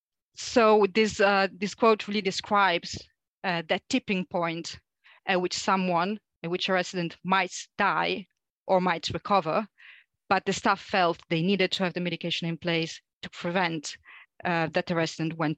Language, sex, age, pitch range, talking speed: English, female, 30-49, 170-200 Hz, 160 wpm